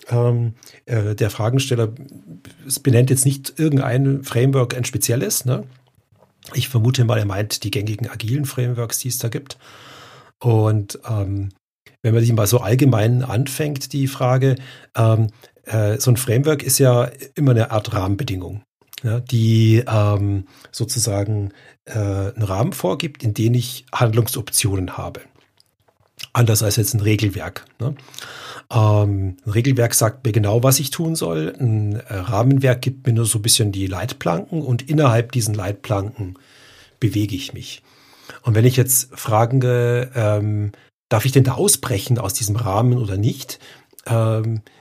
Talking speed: 145 wpm